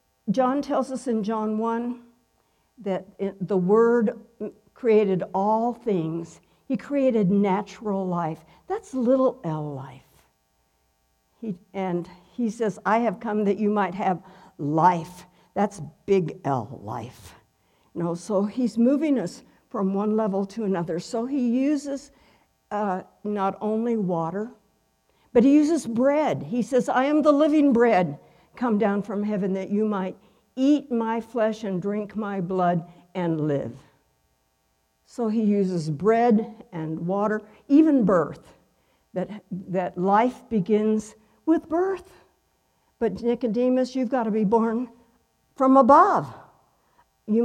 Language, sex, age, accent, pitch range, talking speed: English, female, 60-79, American, 185-240 Hz, 130 wpm